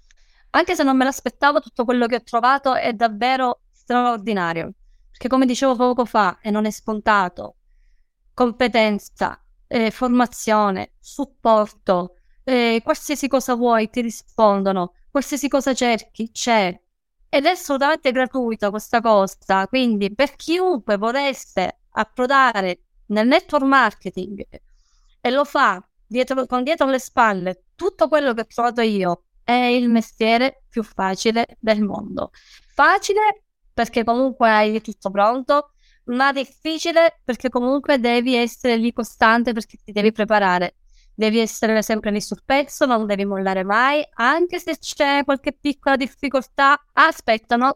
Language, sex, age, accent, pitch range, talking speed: Italian, female, 20-39, native, 215-270 Hz, 135 wpm